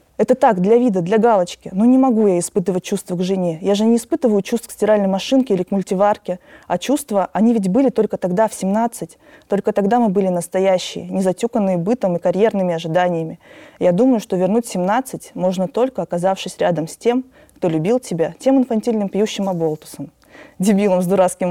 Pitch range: 185-235 Hz